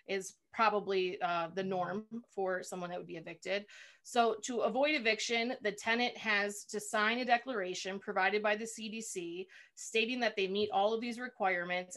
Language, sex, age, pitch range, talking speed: English, female, 30-49, 185-220 Hz, 170 wpm